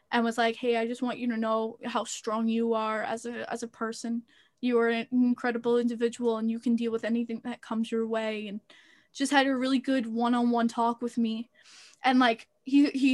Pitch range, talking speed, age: 230-260 Hz, 220 wpm, 10-29